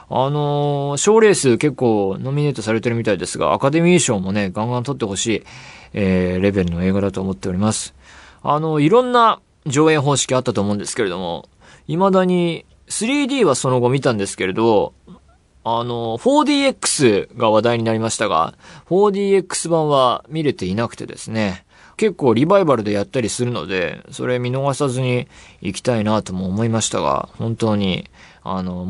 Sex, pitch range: male, 100-140 Hz